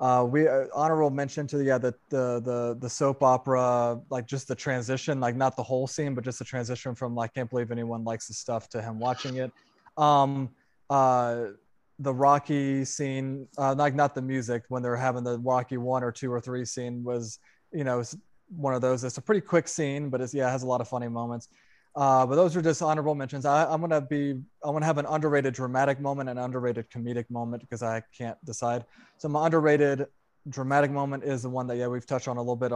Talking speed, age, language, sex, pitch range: 225 wpm, 20-39, English, male, 120-140 Hz